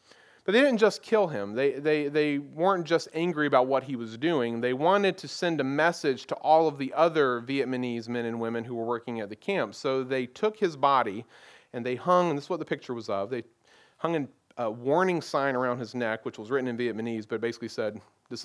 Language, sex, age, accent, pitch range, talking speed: English, male, 40-59, American, 115-140 Hz, 230 wpm